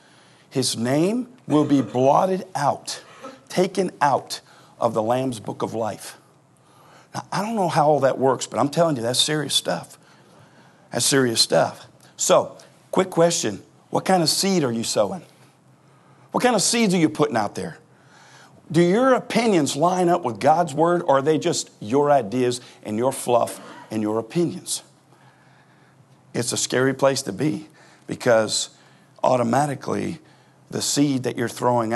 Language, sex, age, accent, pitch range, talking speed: English, male, 50-69, American, 125-165 Hz, 160 wpm